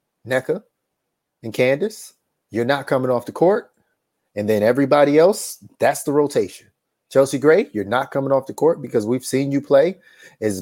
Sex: male